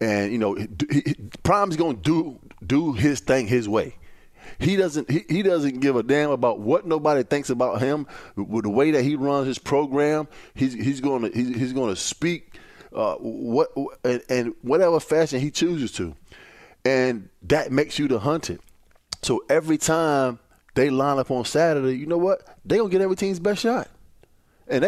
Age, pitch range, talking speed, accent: 20-39, 115-150 Hz, 195 wpm, American